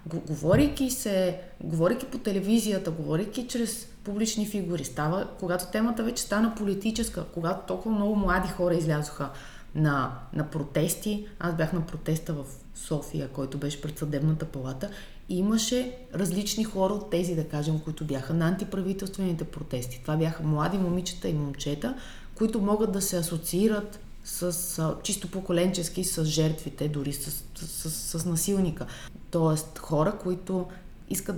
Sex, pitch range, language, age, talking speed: female, 155-210 Hz, Bulgarian, 30-49, 135 wpm